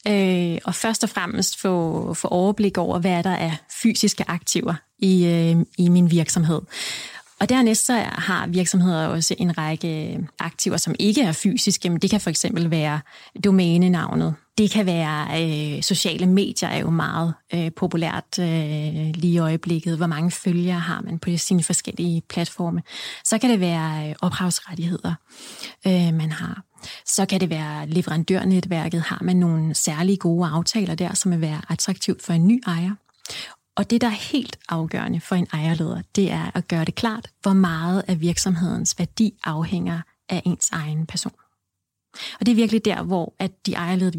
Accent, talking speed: native, 170 wpm